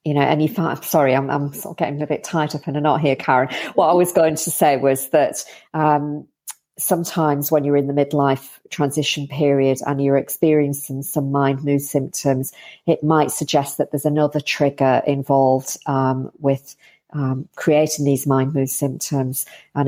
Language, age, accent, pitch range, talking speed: English, 50-69, British, 135-150 Hz, 175 wpm